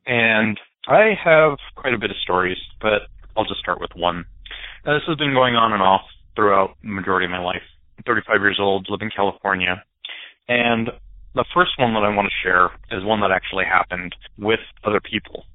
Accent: American